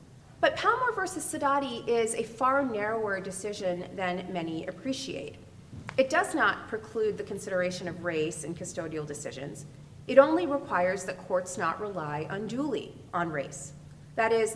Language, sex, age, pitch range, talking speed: English, female, 30-49, 165-225 Hz, 145 wpm